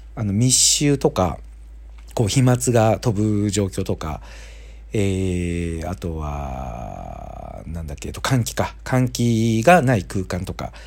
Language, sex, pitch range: Japanese, male, 85-135 Hz